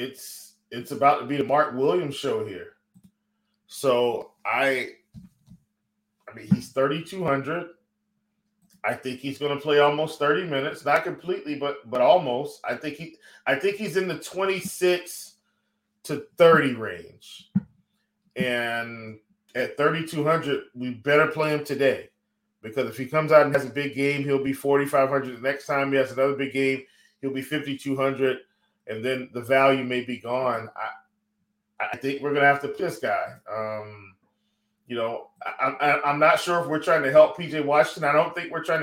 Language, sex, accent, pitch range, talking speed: English, male, American, 130-160 Hz, 185 wpm